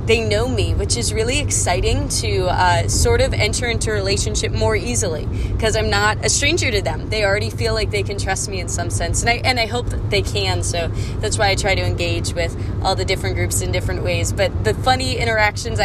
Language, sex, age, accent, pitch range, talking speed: English, female, 20-39, American, 95-105 Hz, 235 wpm